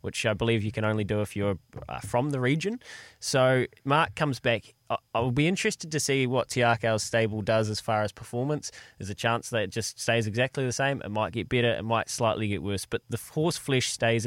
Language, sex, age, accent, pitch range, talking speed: English, male, 20-39, Australian, 110-135 Hz, 225 wpm